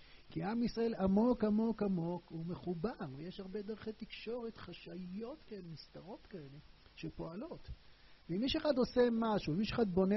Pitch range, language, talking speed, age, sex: 140-195 Hz, Hebrew, 150 wpm, 50-69, male